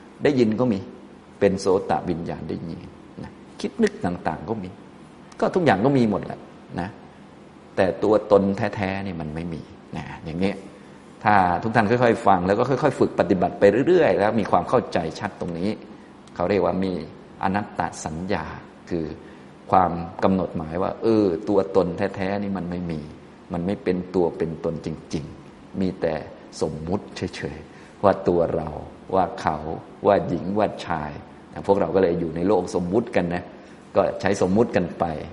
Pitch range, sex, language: 85-100 Hz, male, Thai